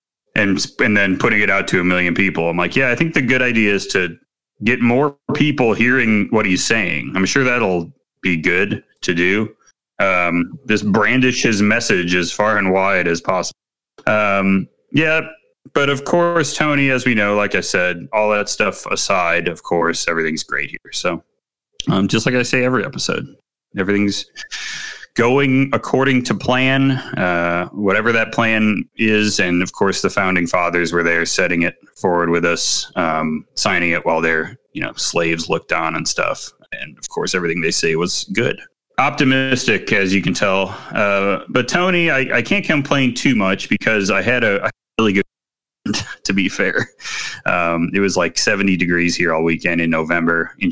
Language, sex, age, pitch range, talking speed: English, male, 30-49, 90-130 Hz, 180 wpm